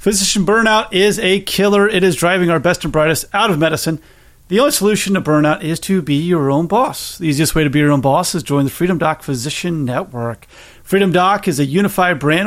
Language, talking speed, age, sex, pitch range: English, 225 wpm, 30-49, male, 155-195 Hz